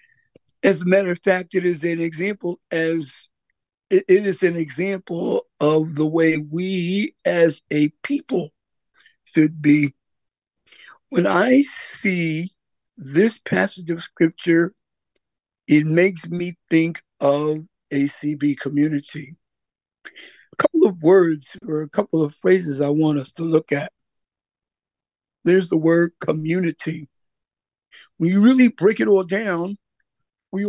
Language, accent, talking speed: English, American, 125 wpm